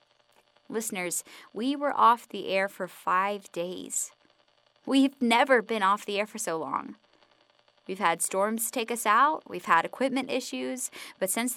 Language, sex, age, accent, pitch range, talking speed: English, female, 10-29, American, 195-235 Hz, 155 wpm